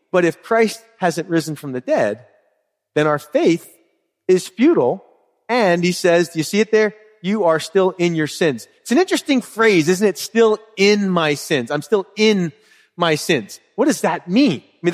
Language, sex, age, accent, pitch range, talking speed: English, male, 30-49, American, 150-220 Hz, 195 wpm